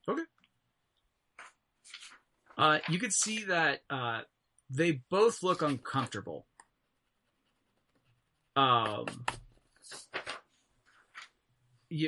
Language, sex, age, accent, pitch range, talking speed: English, male, 30-49, American, 120-165 Hz, 65 wpm